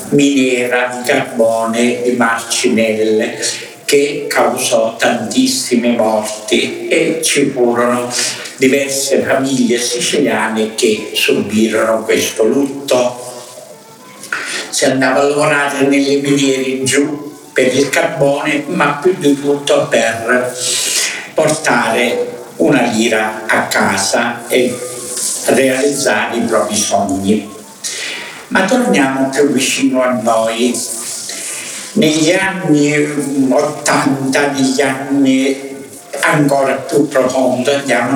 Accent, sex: native, male